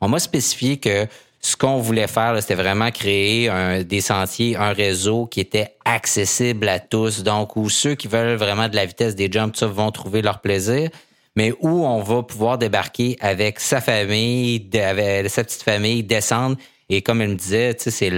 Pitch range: 100-130 Hz